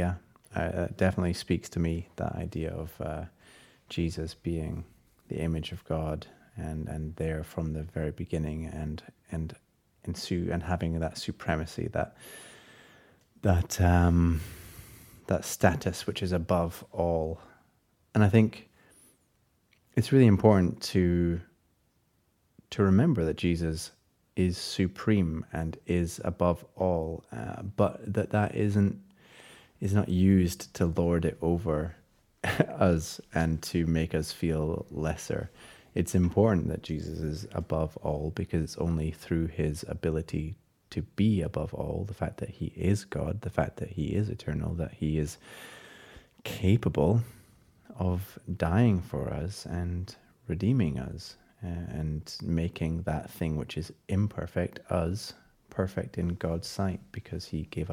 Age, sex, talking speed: 30-49, male, 135 wpm